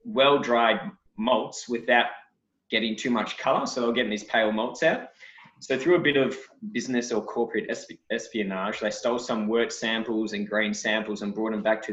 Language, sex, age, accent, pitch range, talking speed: English, male, 20-39, Australian, 105-125 Hz, 180 wpm